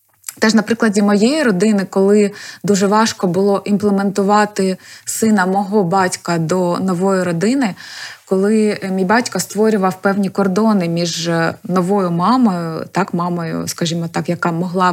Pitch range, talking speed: 185-225 Hz, 130 wpm